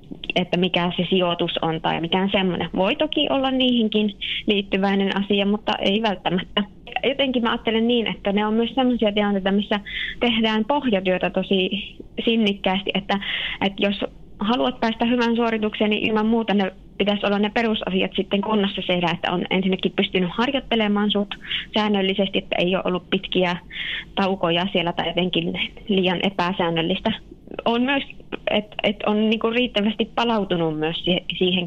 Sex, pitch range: female, 190-230 Hz